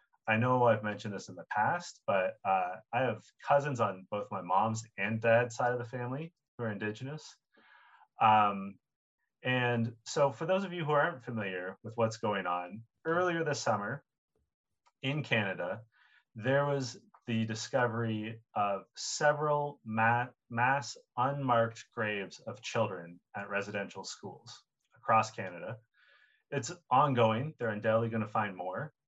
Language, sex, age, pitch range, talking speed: English, male, 30-49, 110-130 Hz, 140 wpm